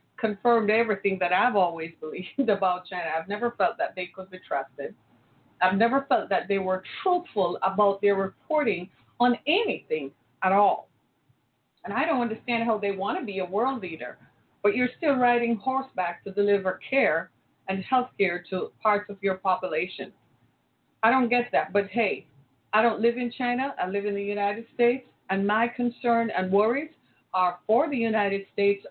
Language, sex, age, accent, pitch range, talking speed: English, female, 40-59, American, 185-230 Hz, 175 wpm